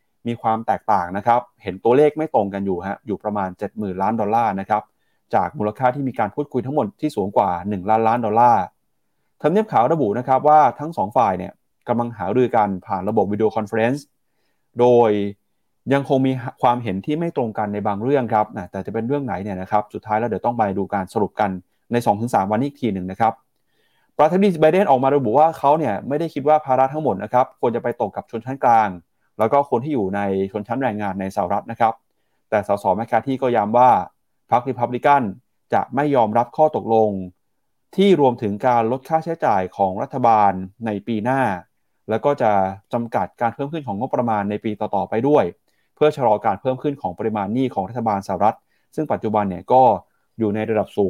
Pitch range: 105-135 Hz